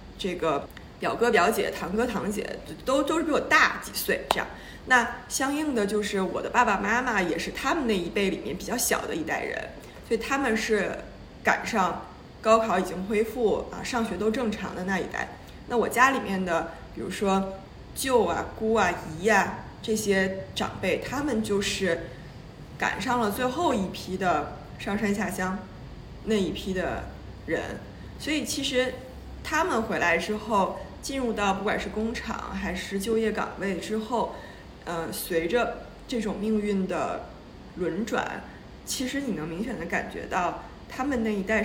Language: Chinese